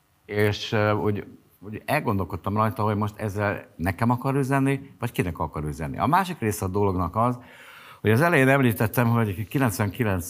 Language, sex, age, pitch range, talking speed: Hungarian, male, 60-79, 85-115 Hz, 150 wpm